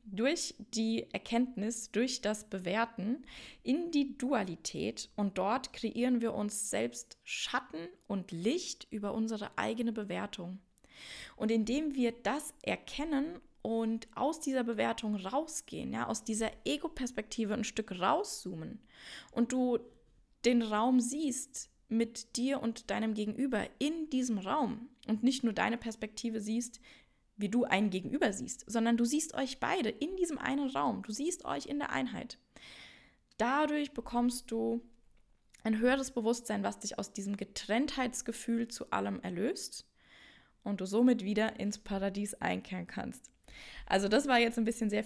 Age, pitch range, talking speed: 10-29, 210-255 Hz, 140 wpm